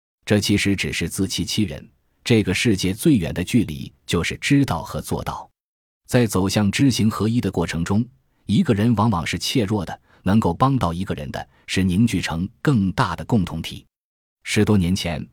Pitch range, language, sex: 85-110 Hz, Chinese, male